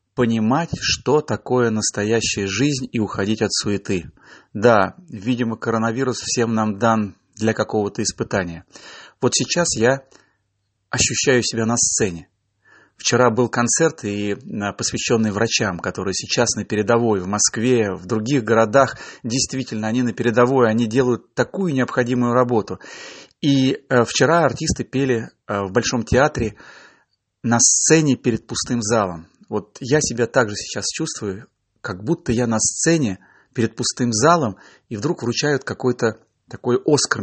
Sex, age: male, 30-49